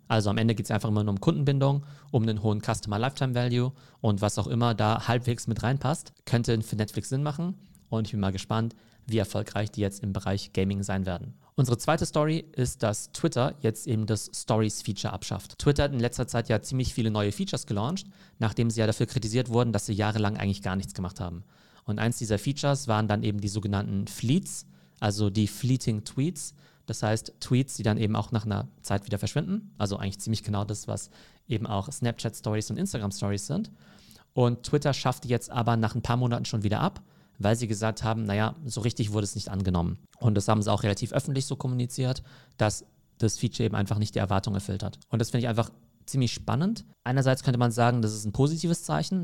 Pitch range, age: 105-125 Hz, 40-59